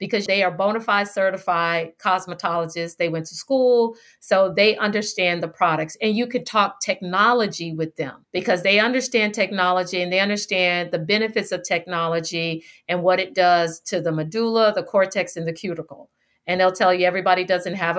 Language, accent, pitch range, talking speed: English, American, 180-235 Hz, 175 wpm